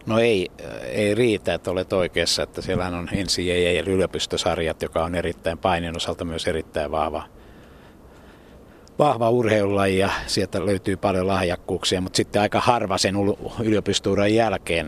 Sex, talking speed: male, 145 wpm